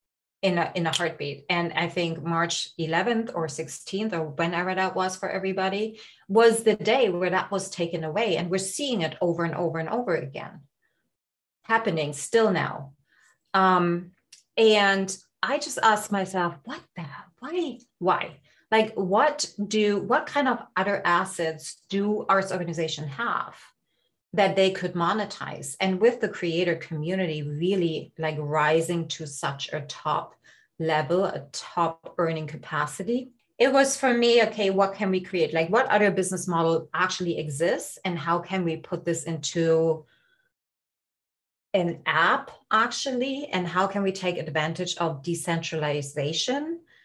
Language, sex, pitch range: English, female, 165-210 Hz